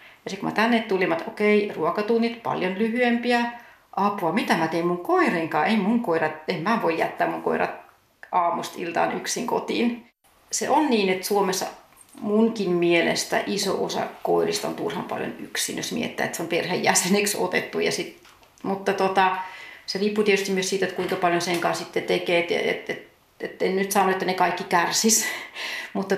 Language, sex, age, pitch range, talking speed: Finnish, female, 40-59, 180-220 Hz, 185 wpm